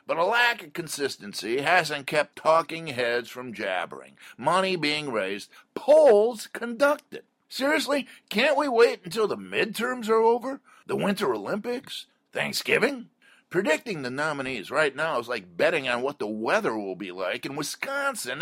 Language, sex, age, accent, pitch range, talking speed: English, male, 50-69, American, 185-255 Hz, 150 wpm